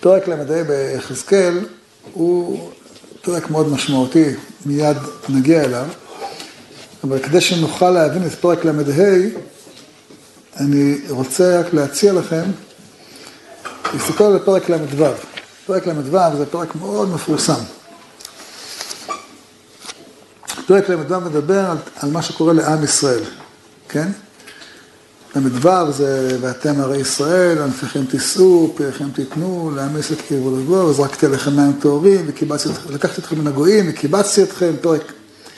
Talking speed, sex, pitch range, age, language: 120 wpm, male, 140-180 Hz, 50-69, Hebrew